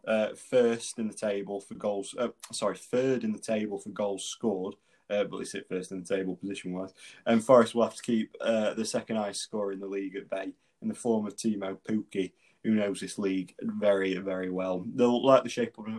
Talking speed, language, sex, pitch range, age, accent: 220 wpm, English, male, 95-110 Hz, 20-39, British